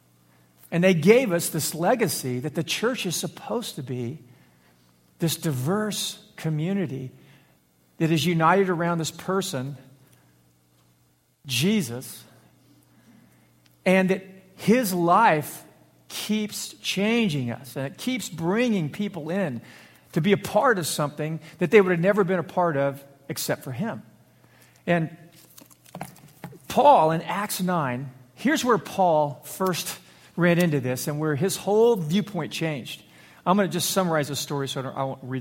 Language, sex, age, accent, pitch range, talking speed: English, male, 50-69, American, 135-190 Hz, 140 wpm